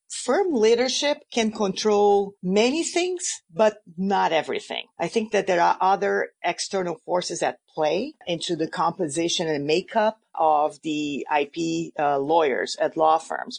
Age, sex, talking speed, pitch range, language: 50-69, female, 140 wpm, 165-210 Hz, English